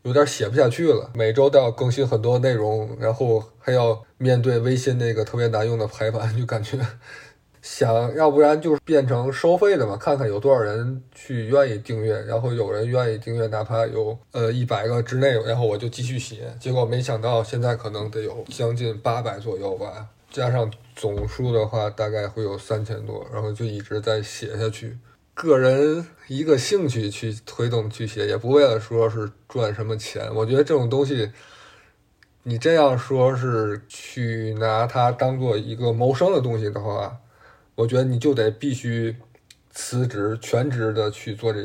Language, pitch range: Chinese, 110-125 Hz